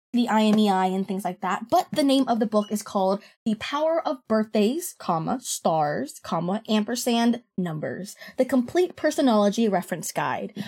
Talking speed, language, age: 155 wpm, English, 10-29